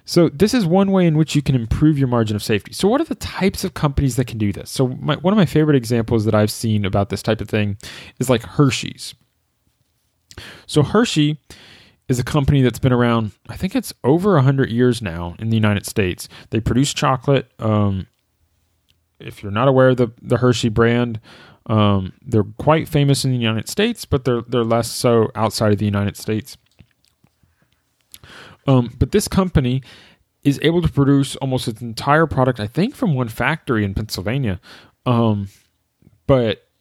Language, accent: English, American